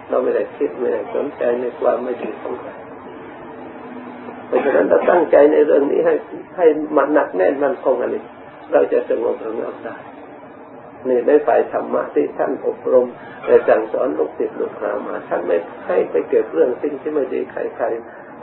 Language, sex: Thai, male